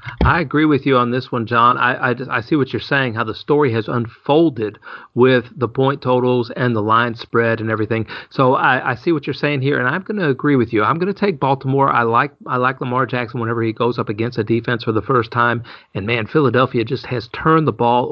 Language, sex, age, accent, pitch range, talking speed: English, male, 40-59, American, 115-135 Hz, 250 wpm